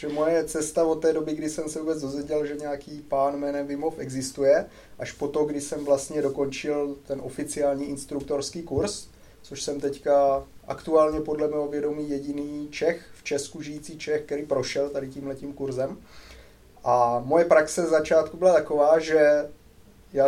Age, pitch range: 20-39, 130-155 Hz